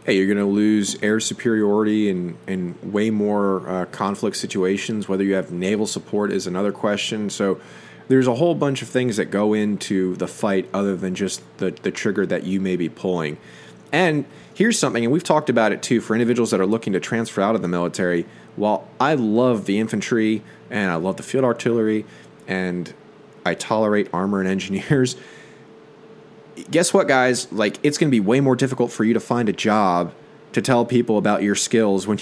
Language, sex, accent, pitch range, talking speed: English, male, American, 95-120 Hz, 195 wpm